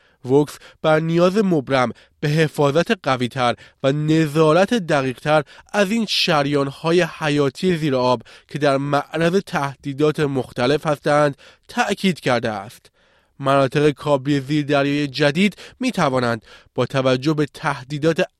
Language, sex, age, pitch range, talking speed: Persian, male, 20-39, 140-175 Hz, 125 wpm